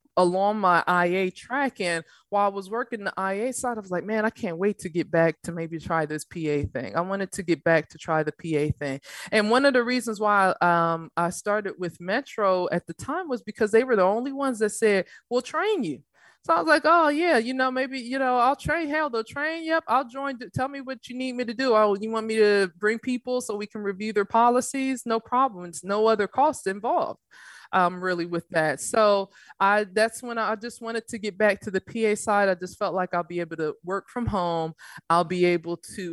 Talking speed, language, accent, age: 235 wpm, English, American, 20-39